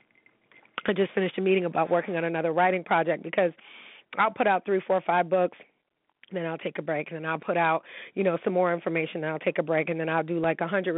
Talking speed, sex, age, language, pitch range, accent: 245 wpm, female, 30-49, English, 165-180 Hz, American